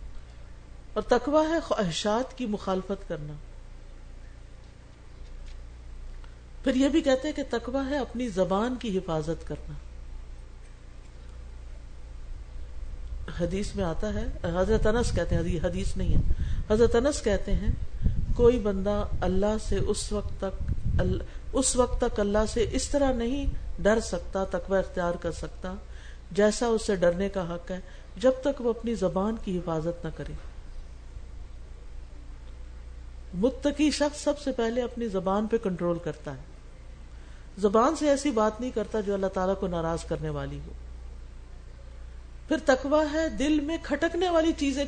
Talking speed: 135 wpm